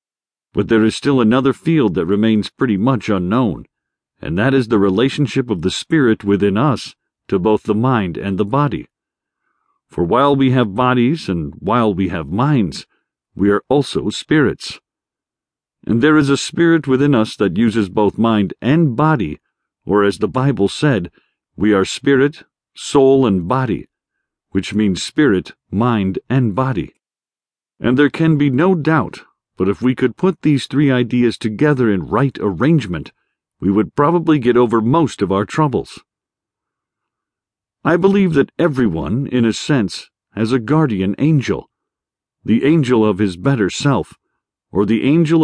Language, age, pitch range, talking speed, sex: English, 50-69, 105-145 Hz, 155 wpm, male